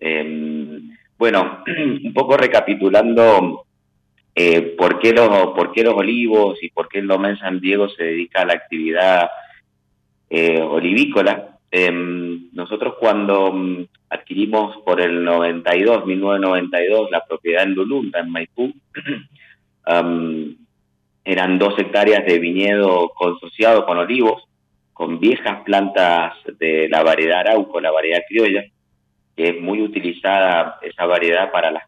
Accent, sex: Argentinian, male